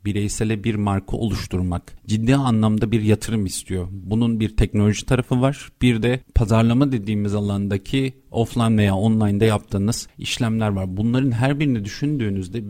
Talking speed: 135 wpm